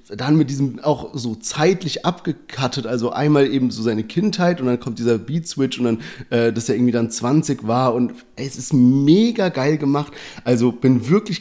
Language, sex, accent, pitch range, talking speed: German, male, German, 125-160 Hz, 185 wpm